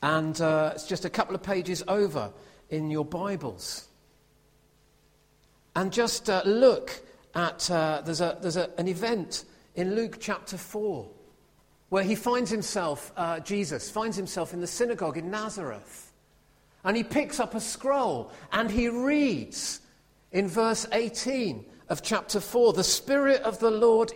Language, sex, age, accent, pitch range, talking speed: English, male, 50-69, British, 150-225 Hz, 150 wpm